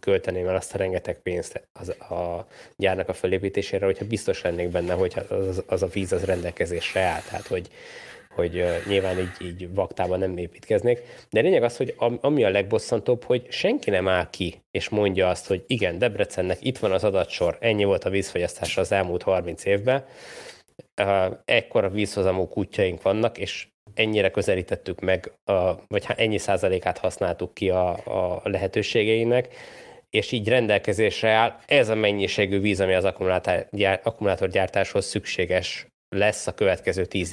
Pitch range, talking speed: 95-110 Hz, 150 wpm